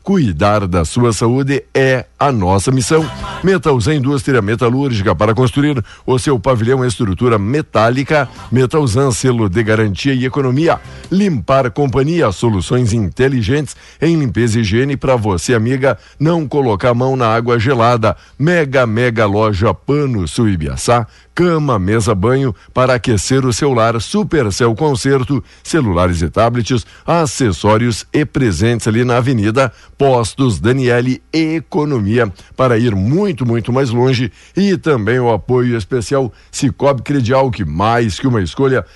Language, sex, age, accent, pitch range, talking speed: Portuguese, male, 60-79, Brazilian, 110-135 Hz, 135 wpm